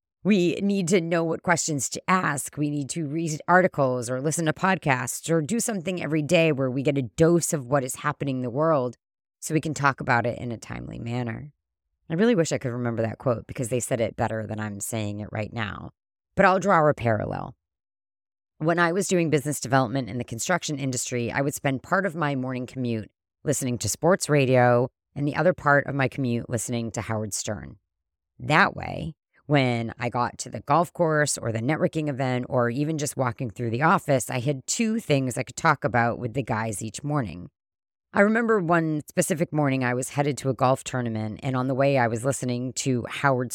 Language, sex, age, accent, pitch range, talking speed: English, female, 30-49, American, 120-155 Hz, 215 wpm